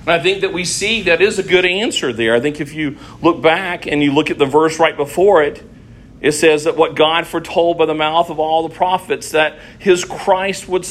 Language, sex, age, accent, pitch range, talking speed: English, male, 50-69, American, 140-190 Hz, 240 wpm